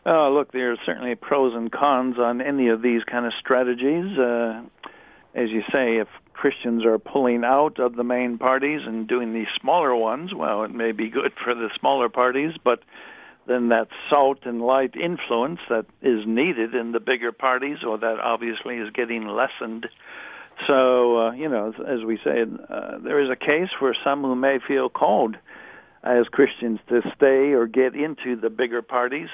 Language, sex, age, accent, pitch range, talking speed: English, male, 60-79, American, 115-135 Hz, 185 wpm